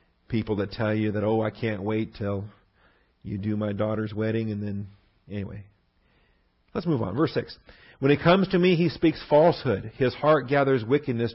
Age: 50-69